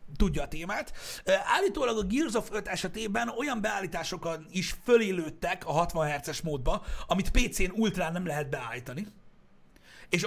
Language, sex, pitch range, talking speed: Hungarian, male, 135-195 Hz, 140 wpm